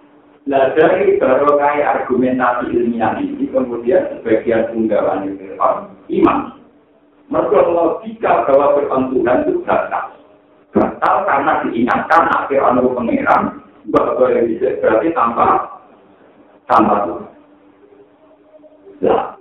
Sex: male